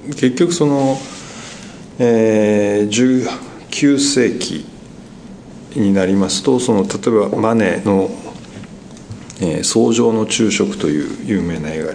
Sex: male